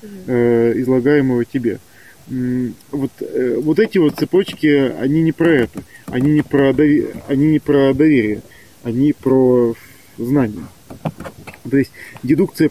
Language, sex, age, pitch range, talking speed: Russian, male, 20-39, 125-150 Hz, 100 wpm